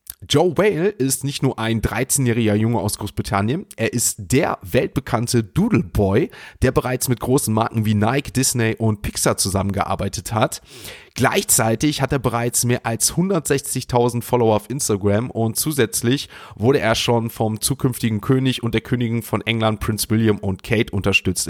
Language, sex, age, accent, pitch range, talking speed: German, male, 30-49, German, 110-135 Hz, 155 wpm